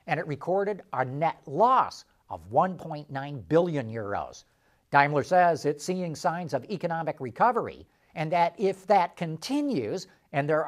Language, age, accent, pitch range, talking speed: English, 50-69, American, 150-205 Hz, 140 wpm